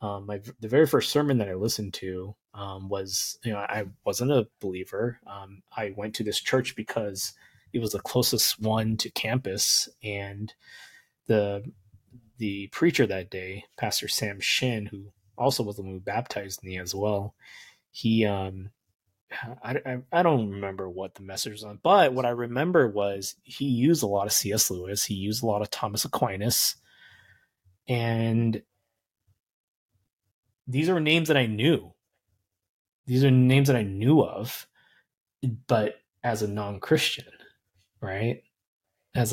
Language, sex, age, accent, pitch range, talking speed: English, male, 20-39, American, 100-120 Hz, 155 wpm